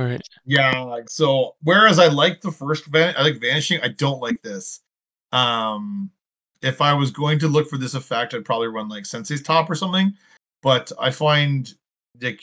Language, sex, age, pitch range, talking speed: English, male, 20-39, 130-170 Hz, 185 wpm